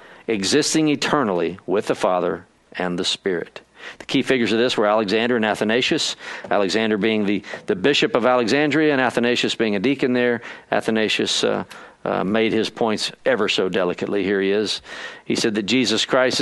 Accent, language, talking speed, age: American, English, 170 wpm, 50-69